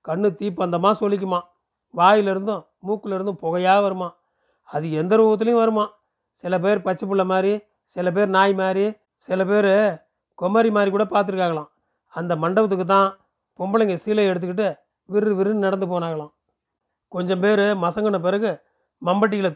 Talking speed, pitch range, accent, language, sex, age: 125 wpm, 180-205 Hz, native, Tamil, male, 40-59